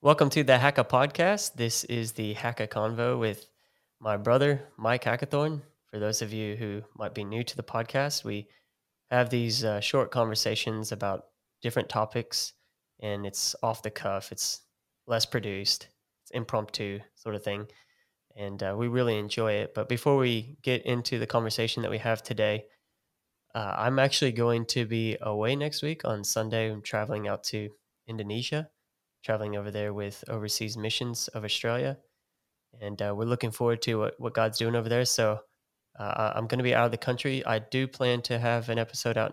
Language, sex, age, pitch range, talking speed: English, male, 20-39, 105-125 Hz, 180 wpm